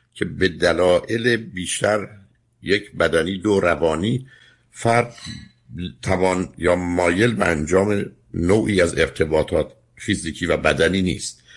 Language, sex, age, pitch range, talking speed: Persian, male, 60-79, 80-105 Hz, 105 wpm